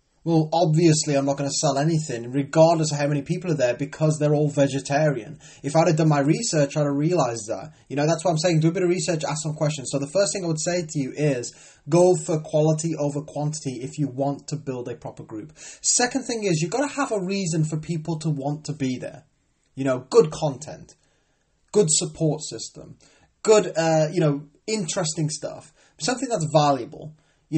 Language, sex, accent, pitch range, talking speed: English, male, British, 145-170 Hz, 220 wpm